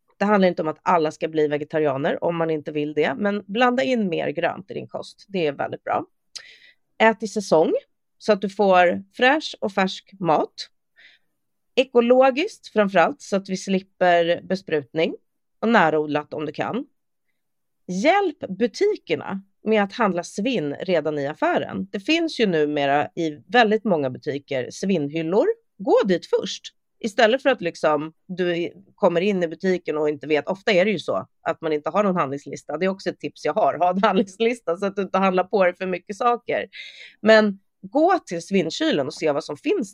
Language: Swedish